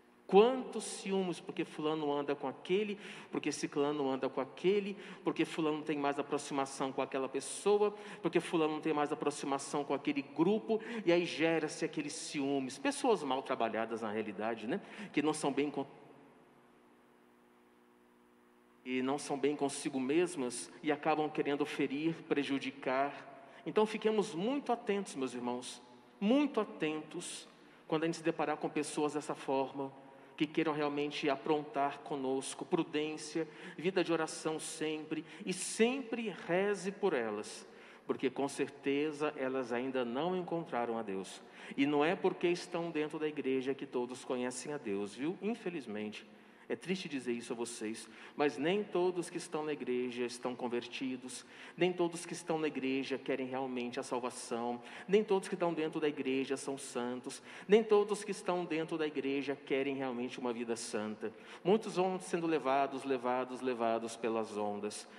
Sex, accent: male, Brazilian